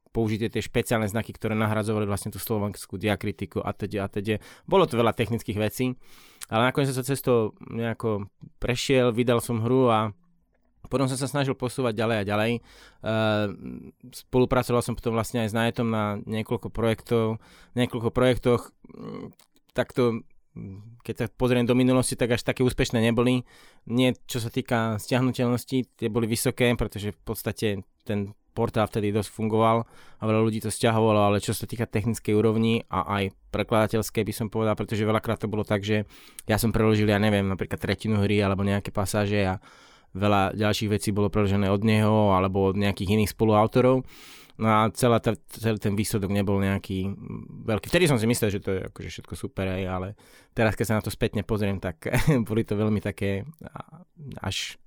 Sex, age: male, 20-39